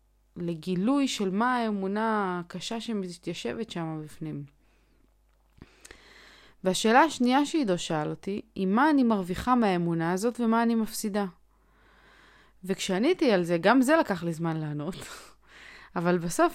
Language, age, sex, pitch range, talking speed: Hebrew, 20-39, female, 175-230 Hz, 120 wpm